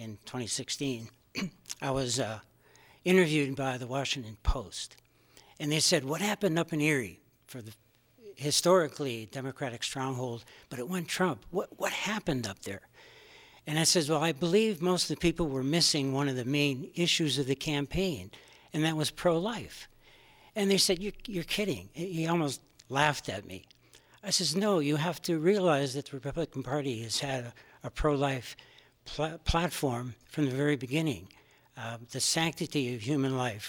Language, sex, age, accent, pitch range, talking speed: English, male, 60-79, American, 125-160 Hz, 165 wpm